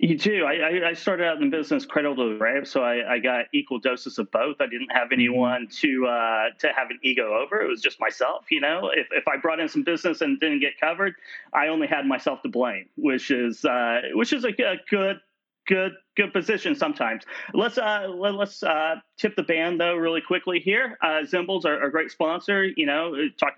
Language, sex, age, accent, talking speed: English, male, 30-49, American, 220 wpm